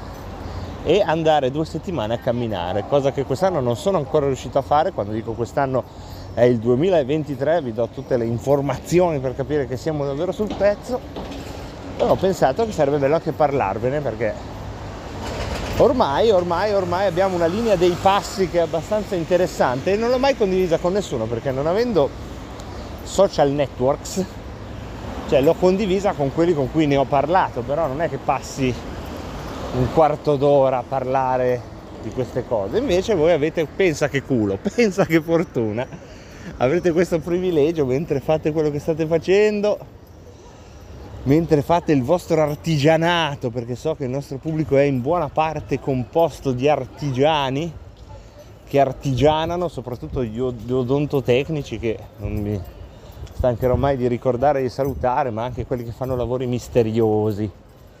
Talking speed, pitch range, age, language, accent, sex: 155 wpm, 120-165 Hz, 30-49, Italian, native, male